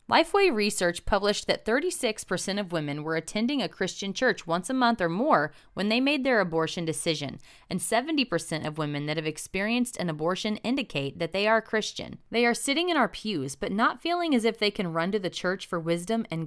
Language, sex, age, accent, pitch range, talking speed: English, female, 20-39, American, 165-230 Hz, 210 wpm